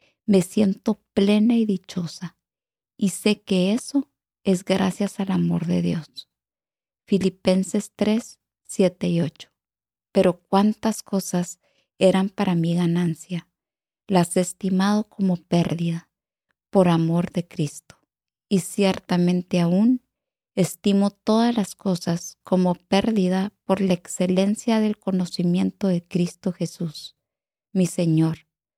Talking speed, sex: 115 wpm, female